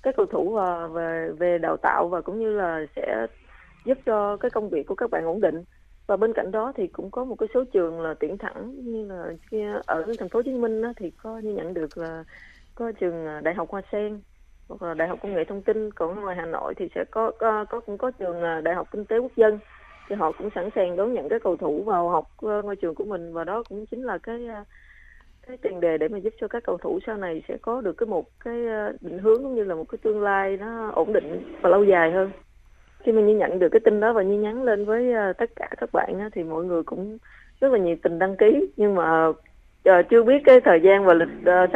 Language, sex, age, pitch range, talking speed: Vietnamese, female, 20-39, 175-230 Hz, 250 wpm